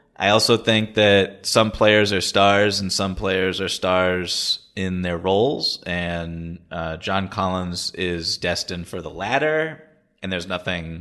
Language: English